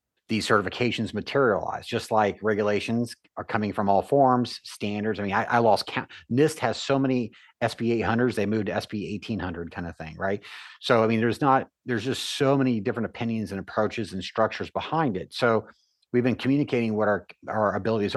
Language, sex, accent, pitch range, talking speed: English, male, American, 100-120 Hz, 180 wpm